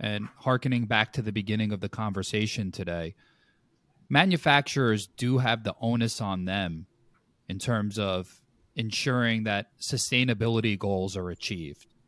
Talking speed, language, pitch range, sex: 130 wpm, English, 100-125 Hz, male